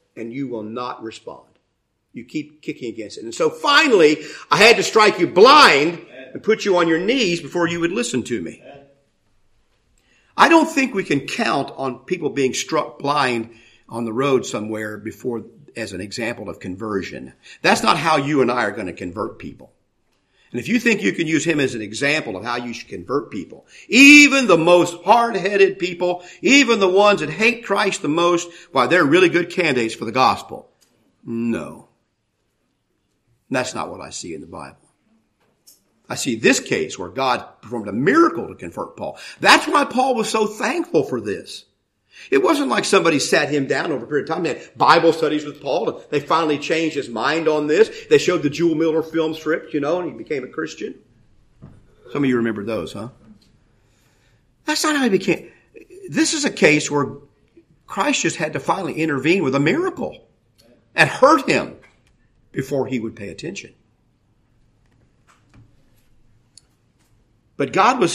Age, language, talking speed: 50-69, English, 180 wpm